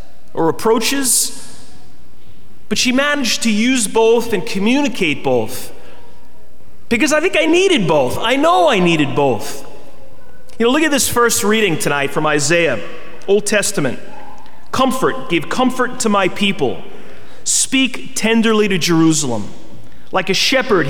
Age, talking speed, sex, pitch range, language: 30-49, 135 wpm, male, 175-260 Hz, English